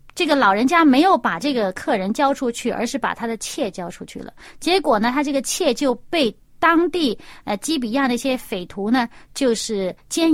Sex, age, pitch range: female, 30-49, 225-320 Hz